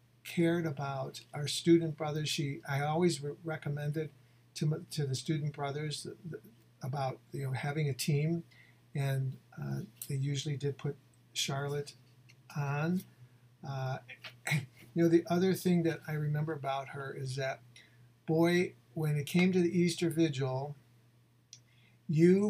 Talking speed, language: 145 wpm, English